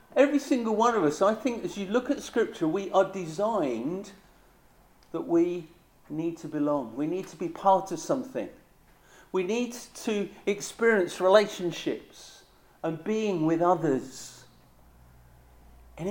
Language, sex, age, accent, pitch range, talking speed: English, male, 50-69, British, 175-230 Hz, 140 wpm